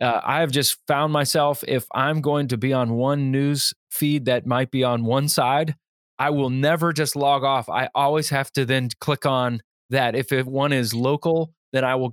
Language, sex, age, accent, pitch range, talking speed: English, male, 20-39, American, 120-145 Hz, 210 wpm